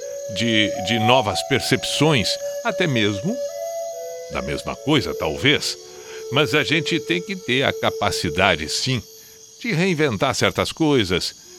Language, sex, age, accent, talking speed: Portuguese, male, 60-79, Brazilian, 120 wpm